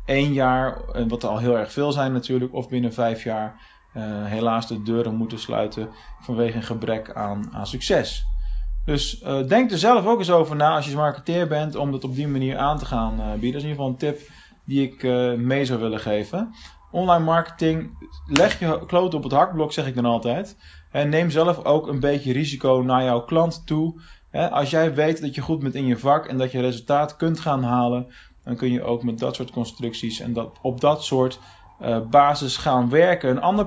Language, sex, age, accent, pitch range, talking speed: Dutch, male, 20-39, Dutch, 115-150 Hz, 215 wpm